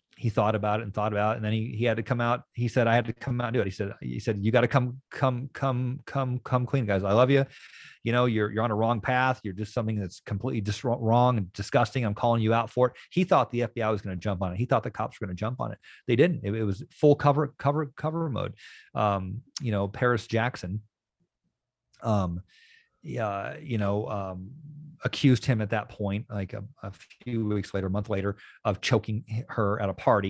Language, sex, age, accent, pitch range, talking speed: English, male, 40-59, American, 100-125 Hz, 250 wpm